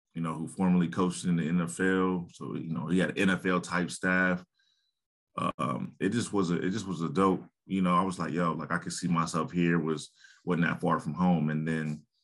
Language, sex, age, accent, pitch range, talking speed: English, male, 30-49, American, 80-90 Hz, 225 wpm